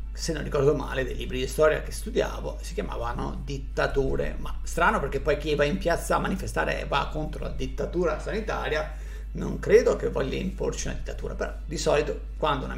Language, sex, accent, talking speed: Italian, male, native, 195 wpm